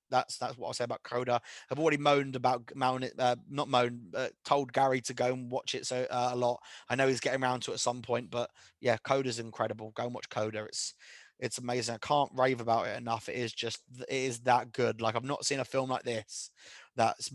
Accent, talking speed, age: British, 240 wpm, 20-39